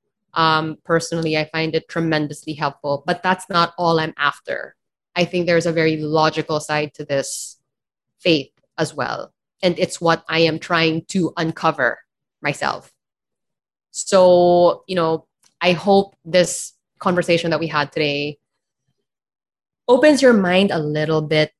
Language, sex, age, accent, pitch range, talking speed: English, female, 20-39, Filipino, 160-190 Hz, 140 wpm